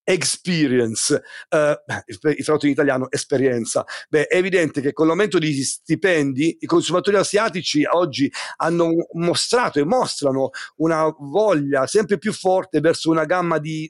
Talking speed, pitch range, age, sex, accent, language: 135 wpm, 140-165 Hz, 50-69, male, native, Italian